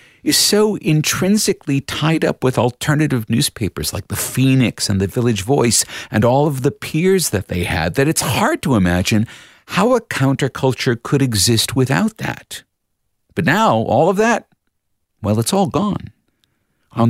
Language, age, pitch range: English, 50-69, 95-140 Hz